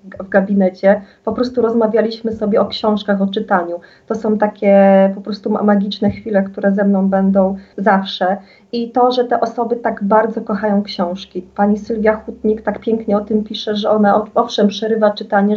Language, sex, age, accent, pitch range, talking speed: Polish, female, 30-49, native, 195-220 Hz, 170 wpm